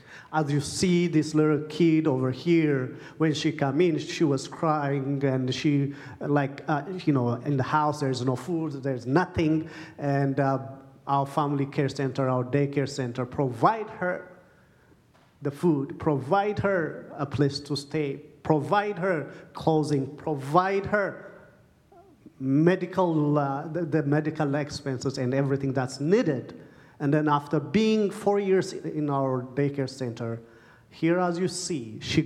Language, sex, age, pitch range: English, male, 40-59, 135-165 Hz